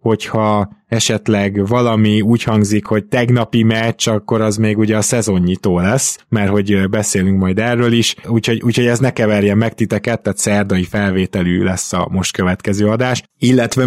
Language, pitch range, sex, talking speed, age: Hungarian, 100-115 Hz, male, 160 wpm, 20-39